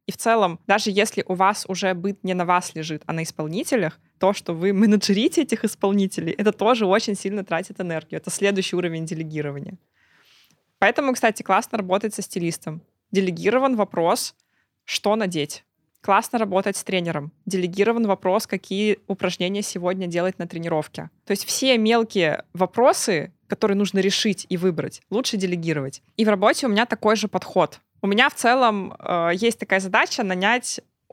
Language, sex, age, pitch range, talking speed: Russian, female, 20-39, 185-225 Hz, 160 wpm